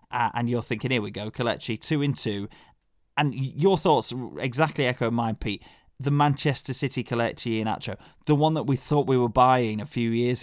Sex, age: male, 20-39